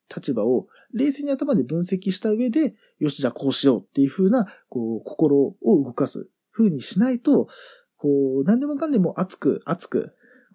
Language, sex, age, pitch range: Japanese, male, 20-39, 135-225 Hz